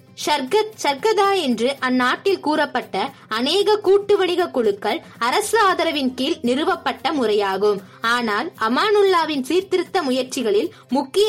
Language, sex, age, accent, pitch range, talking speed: Tamil, female, 20-39, native, 245-370 Hz, 65 wpm